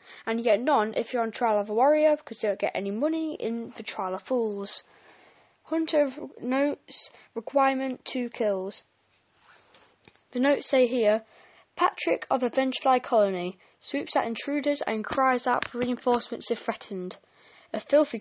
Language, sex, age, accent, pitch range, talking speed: English, female, 10-29, British, 215-260 Hz, 160 wpm